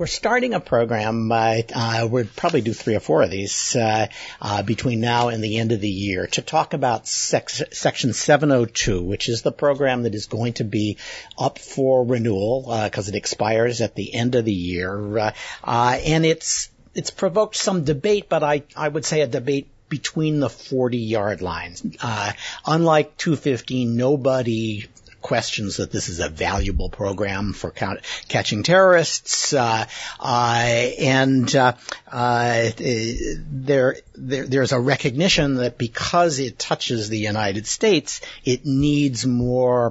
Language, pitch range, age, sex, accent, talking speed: English, 110-140 Hz, 50-69, male, American, 160 wpm